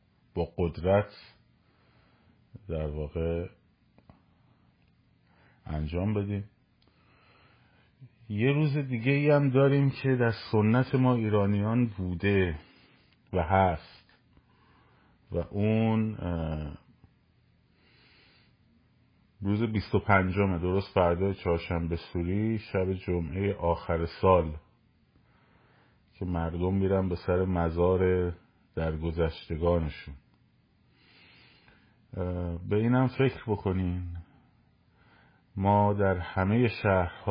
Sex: male